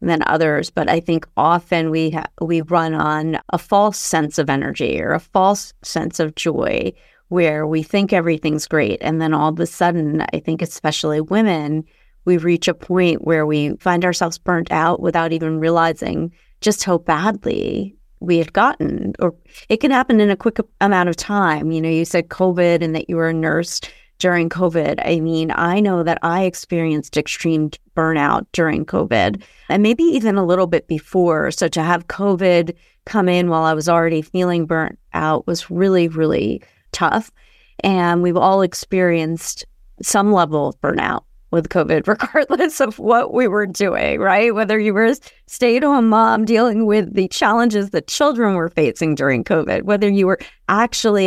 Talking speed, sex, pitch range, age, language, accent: 175 wpm, female, 160-200 Hz, 30-49, English, American